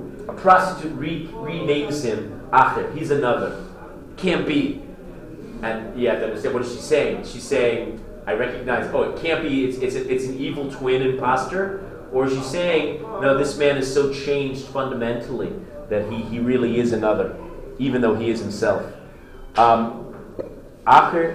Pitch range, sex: 120-160 Hz, male